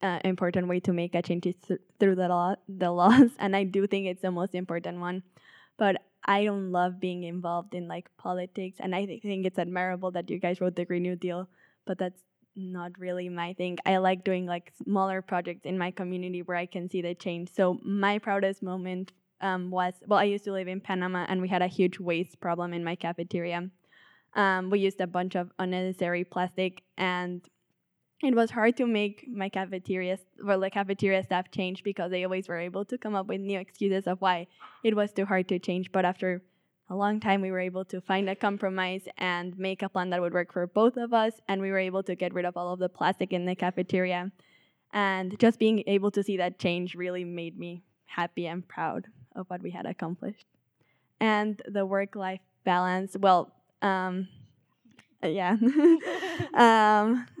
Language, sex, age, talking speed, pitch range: English, female, 10-29, 205 wpm, 180-195 Hz